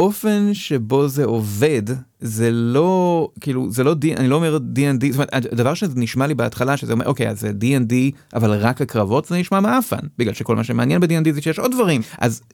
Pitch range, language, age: 115-155 Hz, Hebrew, 30-49